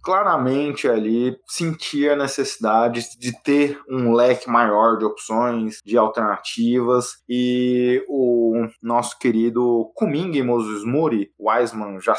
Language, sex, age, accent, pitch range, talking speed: Portuguese, male, 20-39, Brazilian, 115-145 Hz, 110 wpm